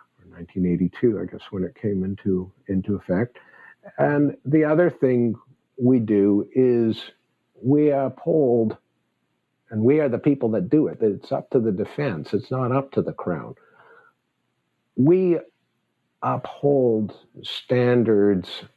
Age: 50-69